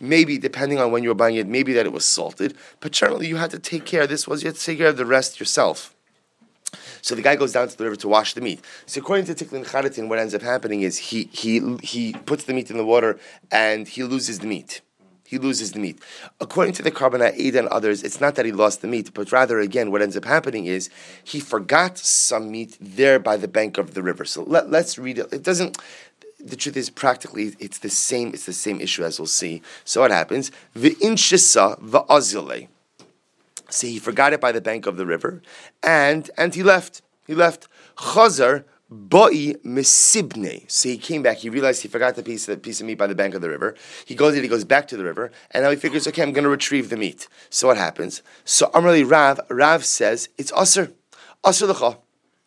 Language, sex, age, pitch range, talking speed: English, male, 30-49, 115-155 Hz, 230 wpm